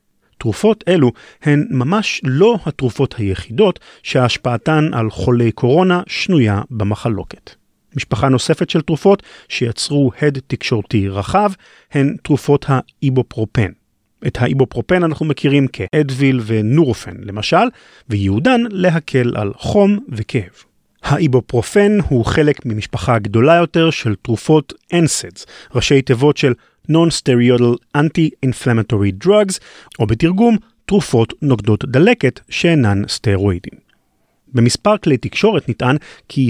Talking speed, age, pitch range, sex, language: 105 wpm, 40-59, 115-165 Hz, male, Hebrew